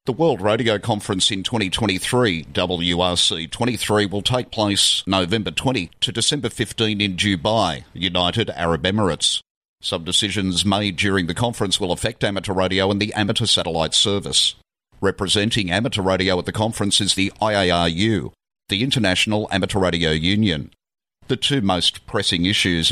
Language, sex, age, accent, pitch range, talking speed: English, male, 50-69, Australian, 90-105 Hz, 145 wpm